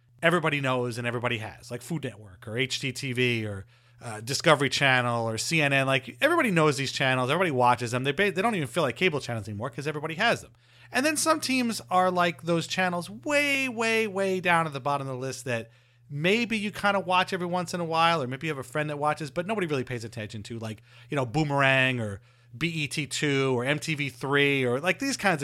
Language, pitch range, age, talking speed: English, 125-175 Hz, 30-49, 220 wpm